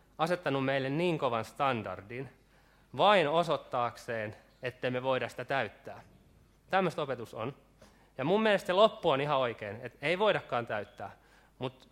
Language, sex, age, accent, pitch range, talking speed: Finnish, male, 20-39, native, 125-165 Hz, 140 wpm